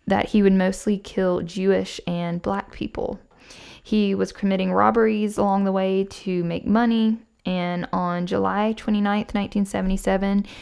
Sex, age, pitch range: female, 10-29, 175-210 Hz